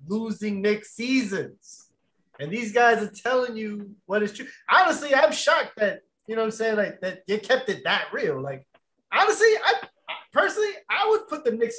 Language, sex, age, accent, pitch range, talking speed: English, male, 20-39, American, 175-245 Hz, 190 wpm